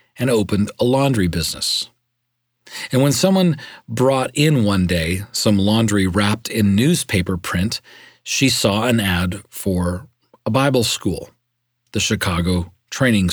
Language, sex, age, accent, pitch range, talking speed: English, male, 40-59, American, 100-125 Hz, 130 wpm